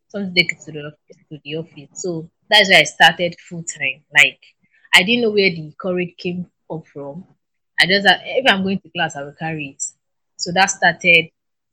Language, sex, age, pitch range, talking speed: English, female, 20-39, 160-205 Hz, 205 wpm